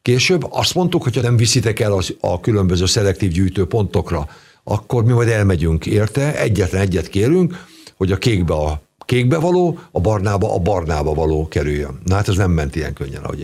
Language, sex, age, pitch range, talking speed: Hungarian, male, 60-79, 85-125 Hz, 175 wpm